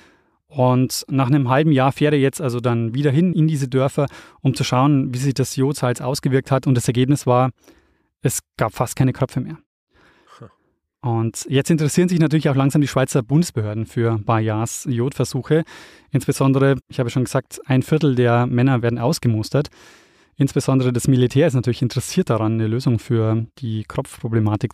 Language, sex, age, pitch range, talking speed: German, male, 20-39, 125-150 Hz, 165 wpm